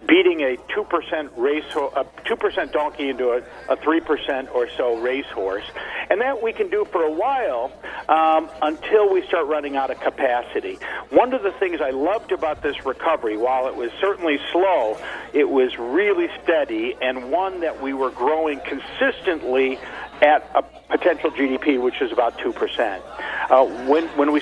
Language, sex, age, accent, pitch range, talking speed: English, male, 50-69, American, 135-190 Hz, 165 wpm